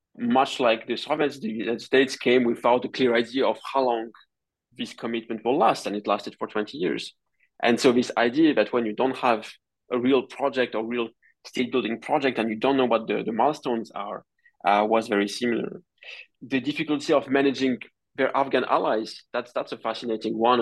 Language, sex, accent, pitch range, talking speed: English, male, French, 115-135 Hz, 195 wpm